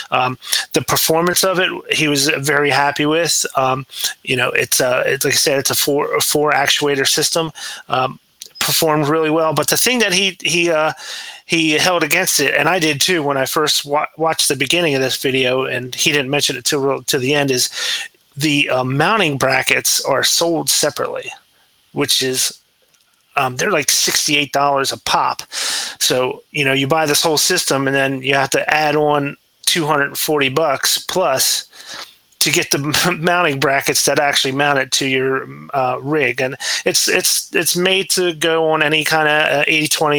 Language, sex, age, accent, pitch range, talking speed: English, male, 30-49, American, 135-160 Hz, 190 wpm